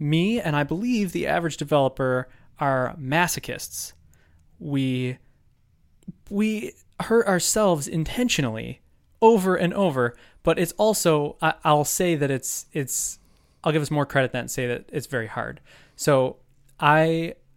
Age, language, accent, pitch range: 20-39, English, American, 125-160 Hz